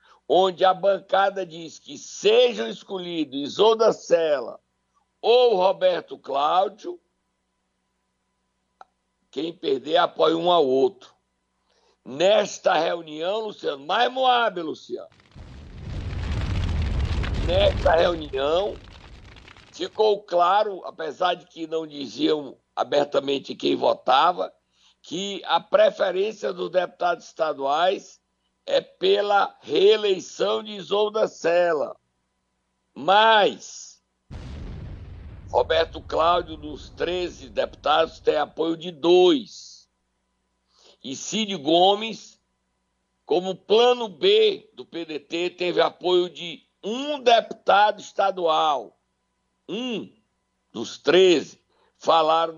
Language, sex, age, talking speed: Portuguese, male, 60-79, 85 wpm